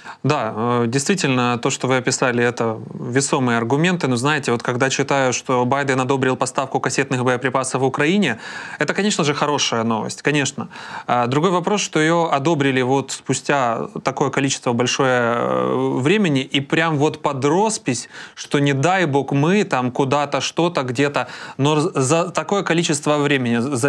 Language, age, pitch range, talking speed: Ukrainian, 20-39, 130-160 Hz, 145 wpm